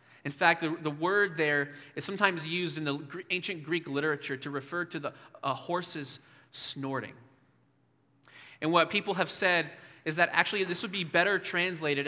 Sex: male